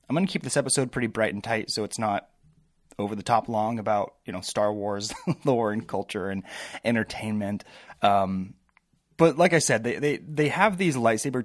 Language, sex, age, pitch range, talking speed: English, male, 20-39, 110-145 Hz, 190 wpm